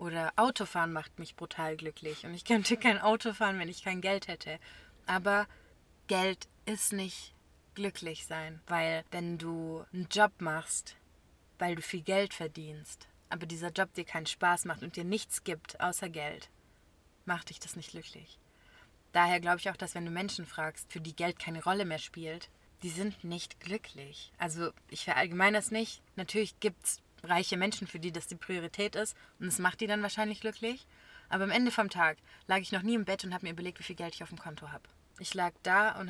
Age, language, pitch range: 20-39, German, 165-195 Hz